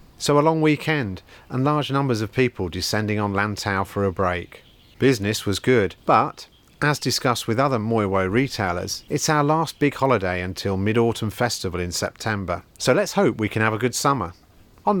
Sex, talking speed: male, 180 wpm